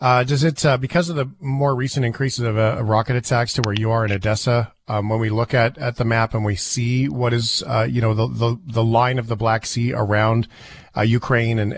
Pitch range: 110-130 Hz